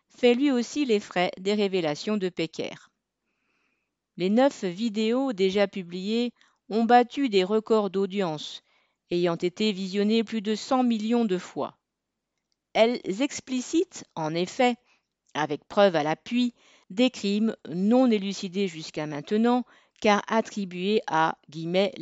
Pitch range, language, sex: 180-235 Hz, French, female